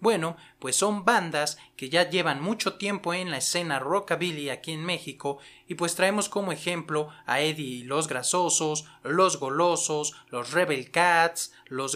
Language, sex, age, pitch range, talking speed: Spanish, male, 30-49, 145-185 Hz, 160 wpm